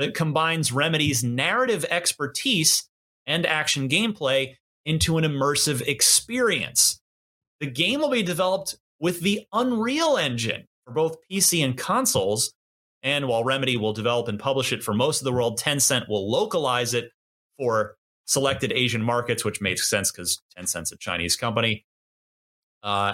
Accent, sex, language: American, male, English